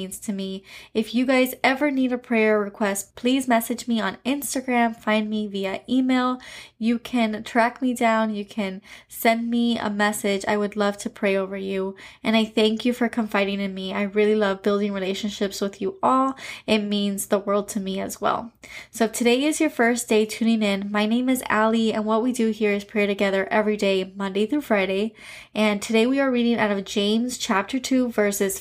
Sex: female